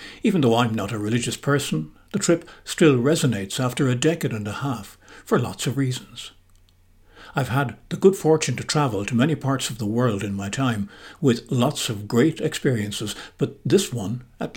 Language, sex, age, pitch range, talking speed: English, male, 60-79, 100-140 Hz, 190 wpm